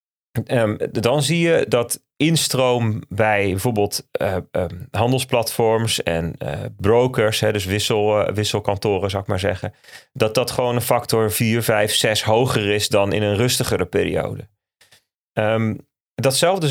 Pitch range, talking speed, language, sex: 105-140 Hz, 125 wpm, Dutch, male